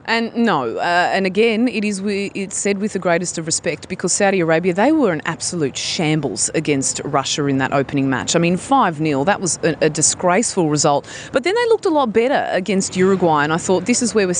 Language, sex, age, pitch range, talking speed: English, female, 30-49, 160-215 Hz, 220 wpm